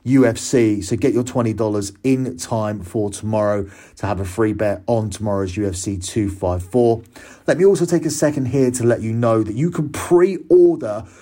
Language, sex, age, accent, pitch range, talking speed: English, male, 30-49, British, 105-130 Hz, 175 wpm